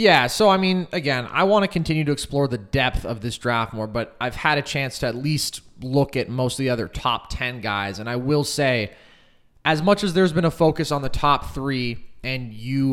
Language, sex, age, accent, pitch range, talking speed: English, male, 20-39, American, 110-140 Hz, 235 wpm